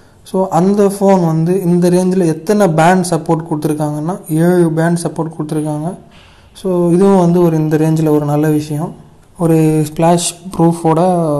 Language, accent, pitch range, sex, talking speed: Tamil, native, 155-175 Hz, male, 135 wpm